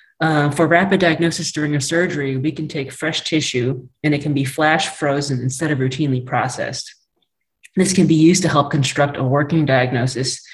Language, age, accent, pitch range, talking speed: English, 30-49, American, 130-155 Hz, 180 wpm